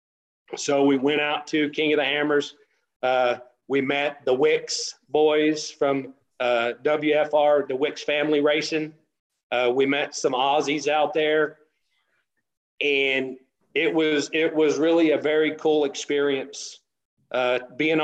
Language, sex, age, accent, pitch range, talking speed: English, male, 40-59, American, 135-155 Hz, 135 wpm